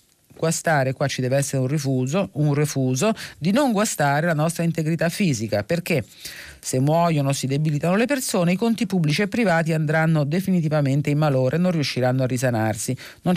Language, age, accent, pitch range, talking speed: Italian, 40-59, native, 125-180 Hz, 165 wpm